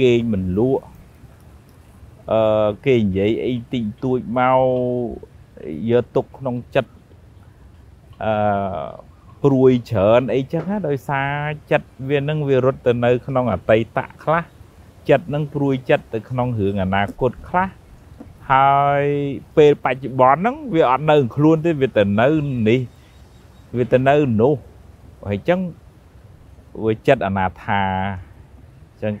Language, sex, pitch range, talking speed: English, male, 100-145 Hz, 115 wpm